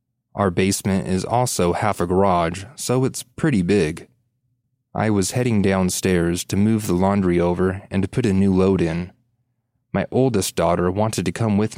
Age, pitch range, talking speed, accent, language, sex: 30-49, 95-120 Hz, 170 wpm, American, English, male